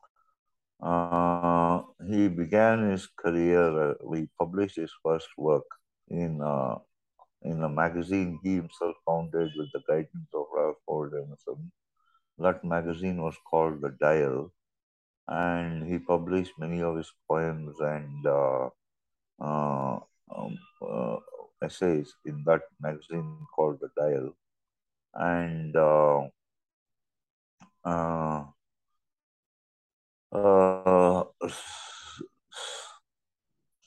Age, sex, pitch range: 50-69, male, 75-100 Hz